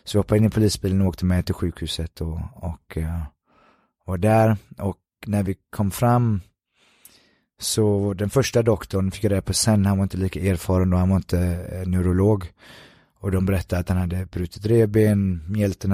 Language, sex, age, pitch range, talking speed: Swedish, male, 20-39, 90-100 Hz, 180 wpm